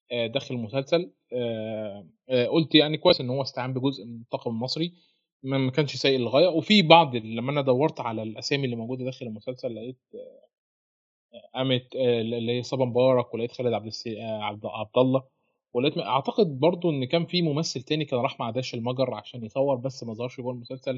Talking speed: 175 wpm